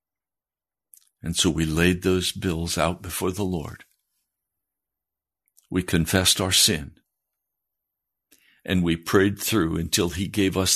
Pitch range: 85-95 Hz